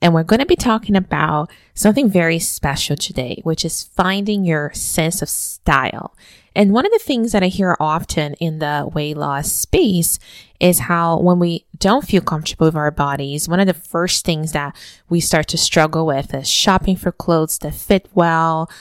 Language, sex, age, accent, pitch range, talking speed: English, female, 20-39, American, 155-190 Hz, 190 wpm